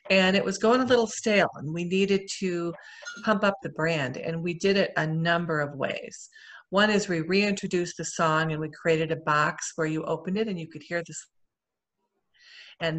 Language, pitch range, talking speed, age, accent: English, 160-195 Hz, 205 wpm, 40-59, American